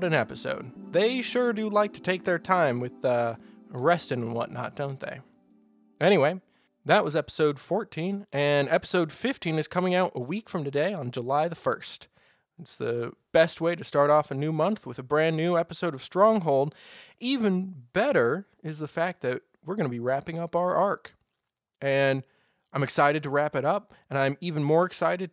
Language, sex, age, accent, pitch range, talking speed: English, male, 20-39, American, 145-195 Hz, 190 wpm